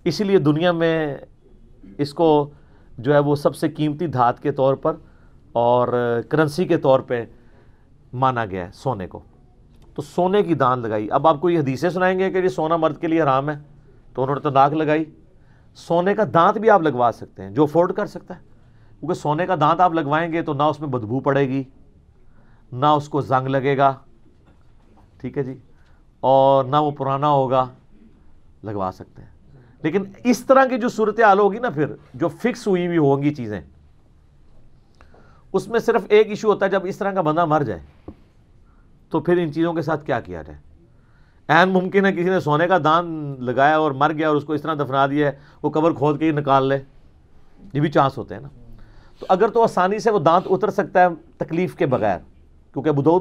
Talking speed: 190 wpm